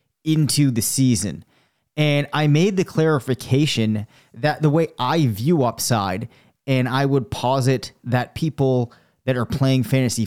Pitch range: 120-145 Hz